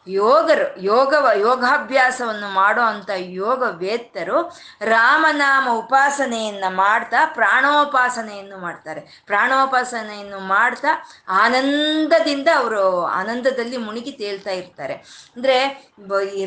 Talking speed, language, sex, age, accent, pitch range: 75 wpm, Kannada, female, 20-39, native, 195-255 Hz